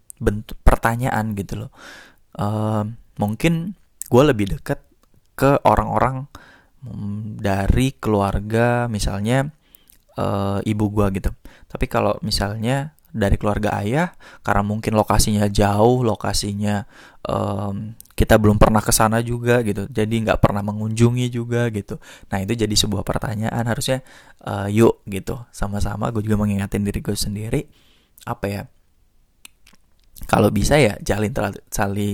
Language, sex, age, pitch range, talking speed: Indonesian, male, 20-39, 100-120 Hz, 120 wpm